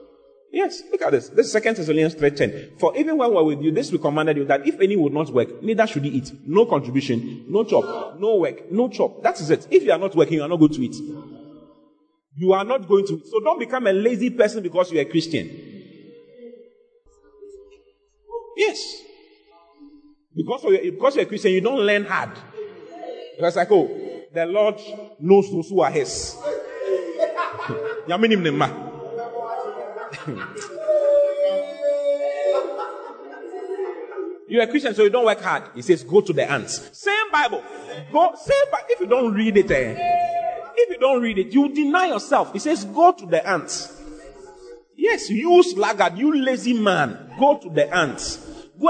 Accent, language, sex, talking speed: Nigerian, English, male, 180 wpm